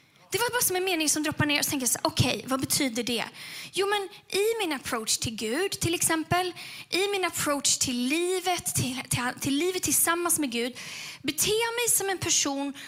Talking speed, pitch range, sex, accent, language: 195 wpm, 250-330 Hz, female, native, Swedish